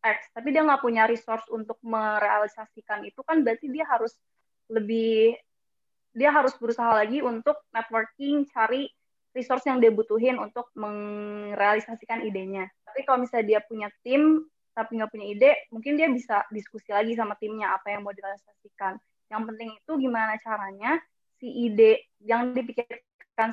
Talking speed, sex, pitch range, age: 150 wpm, female, 210-245 Hz, 20-39